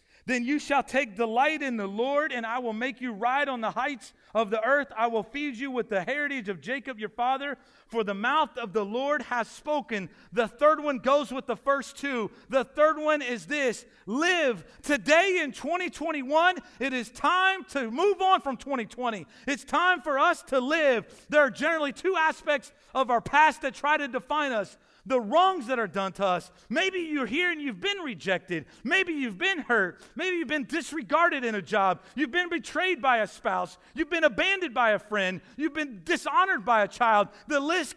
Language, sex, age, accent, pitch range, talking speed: English, male, 40-59, American, 240-315 Hz, 200 wpm